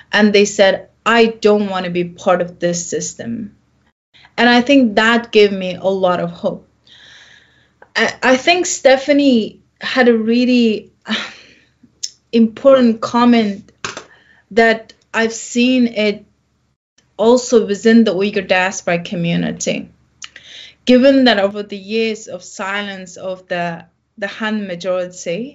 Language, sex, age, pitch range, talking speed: English, female, 20-39, 195-235 Hz, 125 wpm